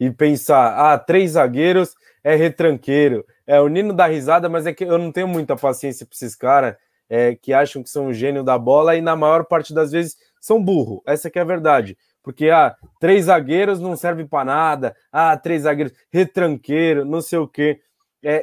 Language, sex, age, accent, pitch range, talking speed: Portuguese, male, 20-39, Brazilian, 140-175 Hz, 200 wpm